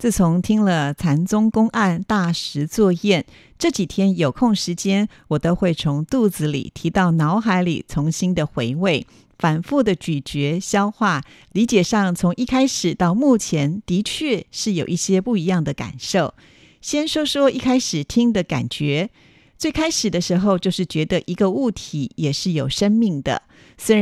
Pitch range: 165-220 Hz